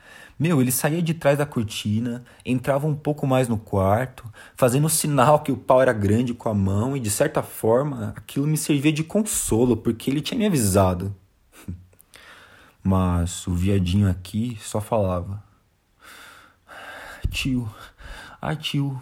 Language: Portuguese